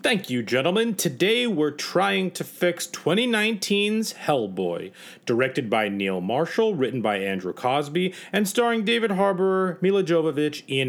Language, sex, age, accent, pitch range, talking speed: English, male, 40-59, American, 130-185 Hz, 140 wpm